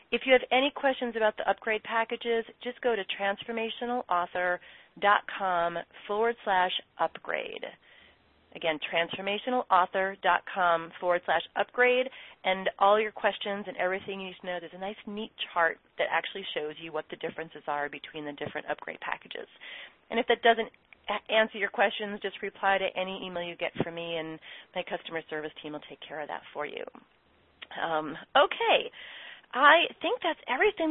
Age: 30-49